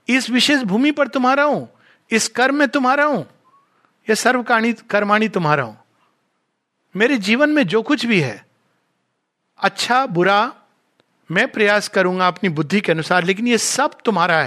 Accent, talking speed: native, 140 wpm